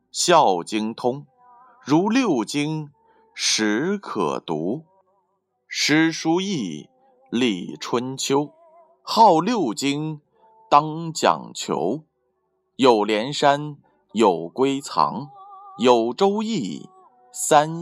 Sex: male